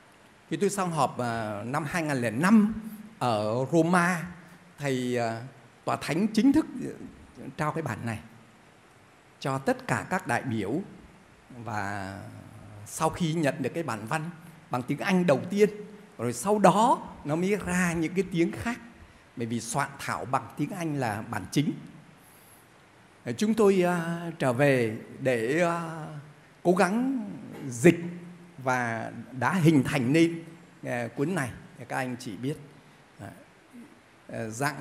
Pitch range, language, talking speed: 125-175 Hz, Vietnamese, 130 wpm